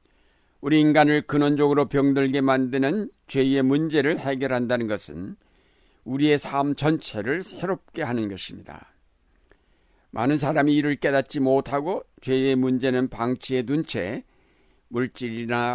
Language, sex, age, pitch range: Korean, male, 60-79, 120-150 Hz